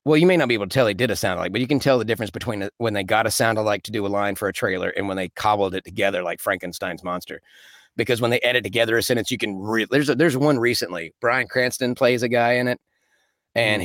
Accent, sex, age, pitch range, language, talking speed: American, male, 30-49, 100-135 Hz, English, 280 wpm